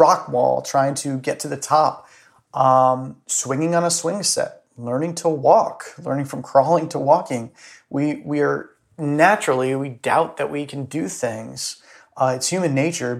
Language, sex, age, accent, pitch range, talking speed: English, male, 30-49, American, 125-155 Hz, 170 wpm